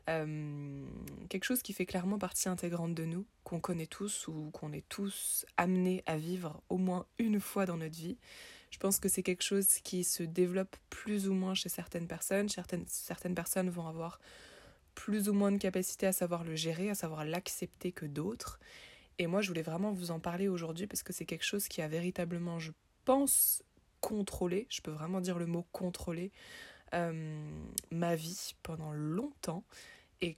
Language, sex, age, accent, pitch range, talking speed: French, female, 20-39, French, 165-190 Hz, 185 wpm